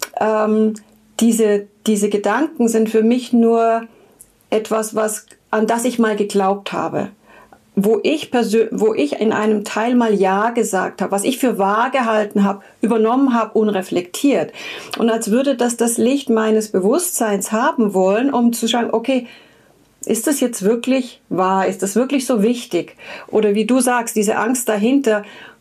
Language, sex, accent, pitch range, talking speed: German, female, German, 205-240 Hz, 160 wpm